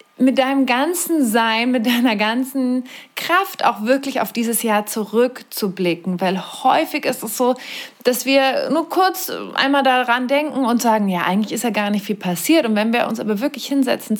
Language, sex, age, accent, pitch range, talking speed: German, female, 30-49, German, 195-260 Hz, 180 wpm